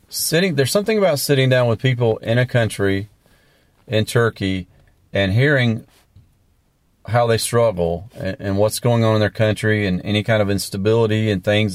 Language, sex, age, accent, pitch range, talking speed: English, male, 40-59, American, 95-115 Hz, 170 wpm